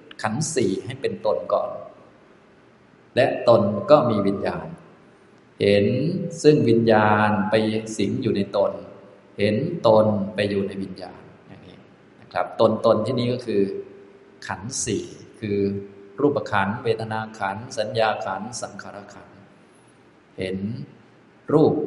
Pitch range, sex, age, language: 100-120 Hz, male, 20-39, Thai